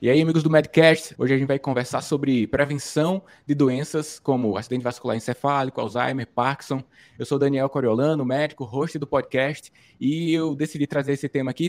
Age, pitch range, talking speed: 20-39, 125-155 Hz, 185 wpm